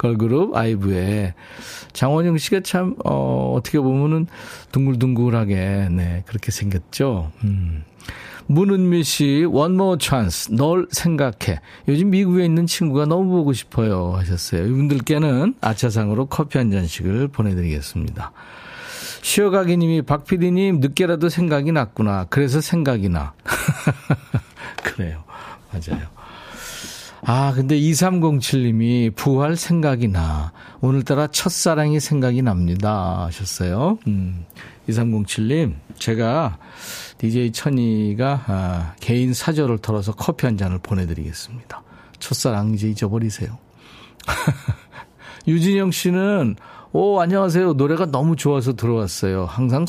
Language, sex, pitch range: Korean, male, 100-155 Hz